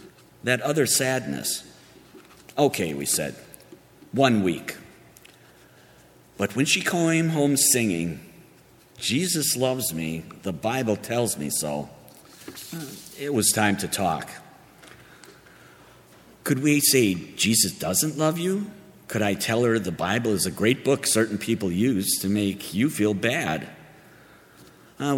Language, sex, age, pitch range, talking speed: English, male, 50-69, 100-140 Hz, 125 wpm